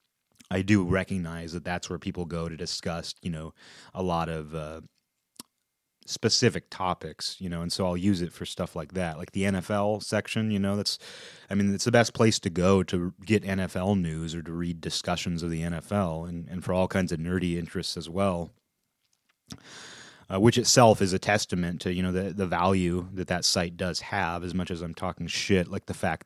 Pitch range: 85-100 Hz